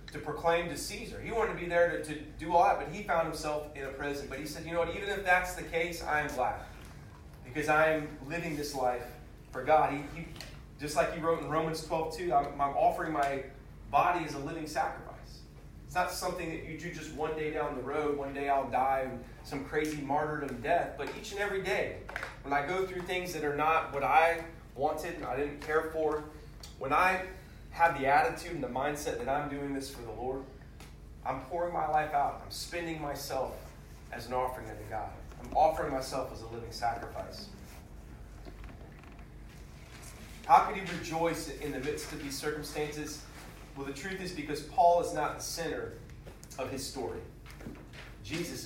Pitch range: 135-165 Hz